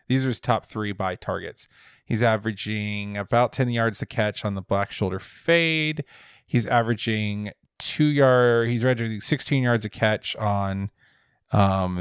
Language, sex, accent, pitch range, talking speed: English, male, American, 105-135 Hz, 140 wpm